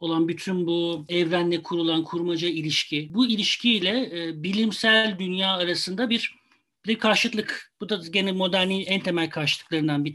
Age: 40-59